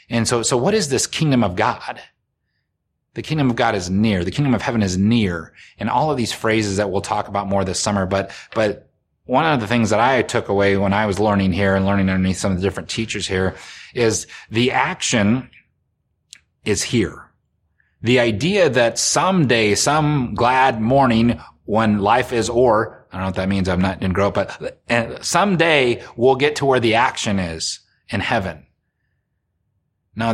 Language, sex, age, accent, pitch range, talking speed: English, male, 30-49, American, 100-125 Hz, 190 wpm